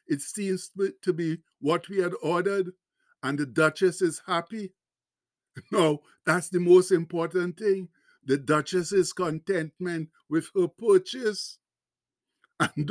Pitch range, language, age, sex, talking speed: 170-200 Hz, English, 60-79, male, 120 wpm